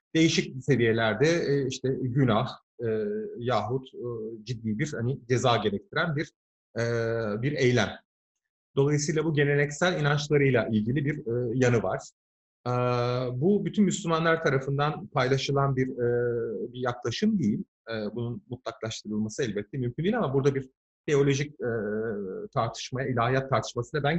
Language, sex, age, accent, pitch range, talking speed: Turkish, male, 40-59, native, 120-155 Hz, 125 wpm